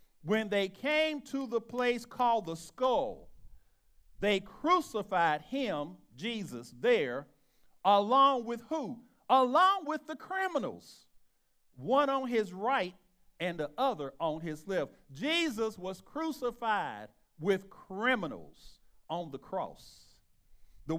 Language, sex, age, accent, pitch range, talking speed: English, male, 50-69, American, 180-265 Hz, 115 wpm